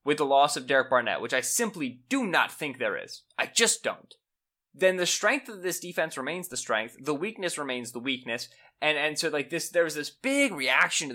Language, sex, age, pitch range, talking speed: English, male, 20-39, 125-170 Hz, 225 wpm